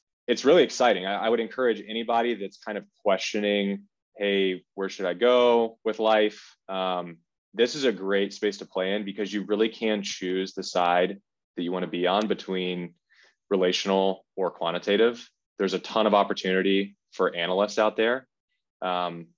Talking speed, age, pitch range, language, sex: 165 wpm, 20-39, 95-105 Hz, English, male